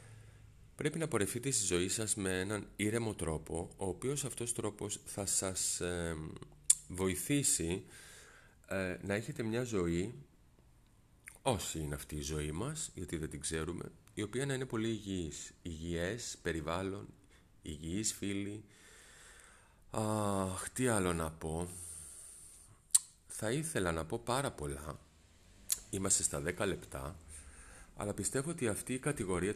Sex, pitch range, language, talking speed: male, 80-105 Hz, Greek, 125 wpm